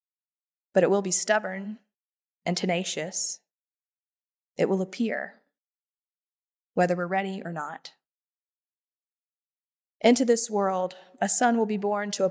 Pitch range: 180-210 Hz